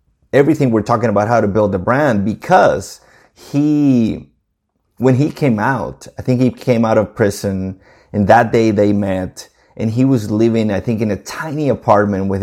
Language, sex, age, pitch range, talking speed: English, male, 30-49, 100-125 Hz, 185 wpm